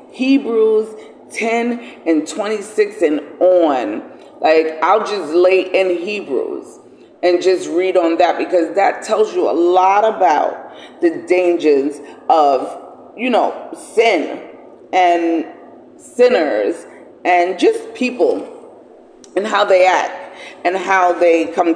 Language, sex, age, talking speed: English, female, 30-49, 120 wpm